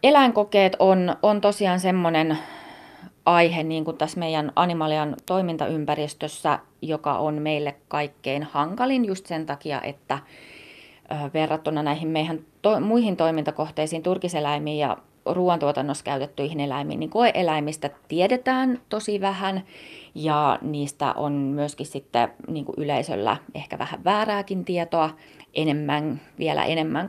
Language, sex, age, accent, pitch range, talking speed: Finnish, female, 30-49, native, 150-180 Hz, 110 wpm